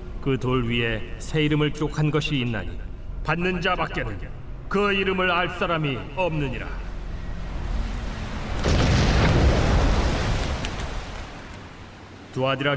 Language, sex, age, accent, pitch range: Korean, male, 40-59, native, 105-145 Hz